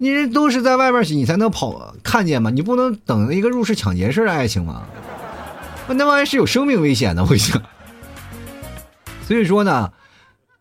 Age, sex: 30-49, male